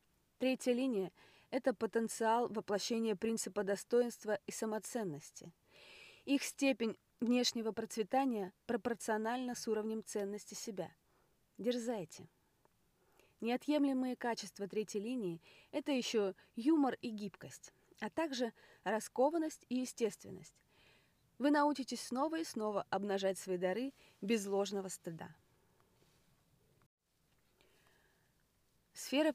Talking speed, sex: 90 wpm, female